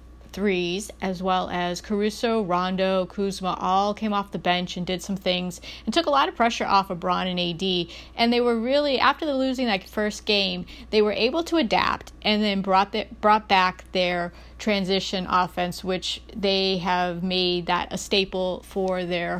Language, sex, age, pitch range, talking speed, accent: English, female, 30-49, 180-215 Hz, 175 wpm, American